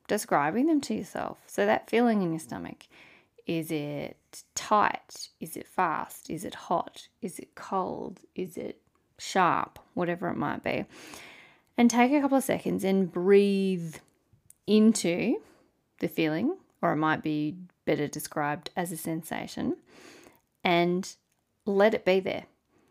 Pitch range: 160-220 Hz